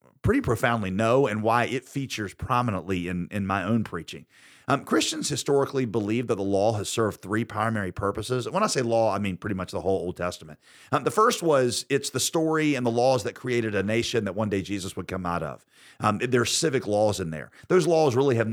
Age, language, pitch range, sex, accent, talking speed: 40-59, English, 100-125 Hz, male, American, 225 wpm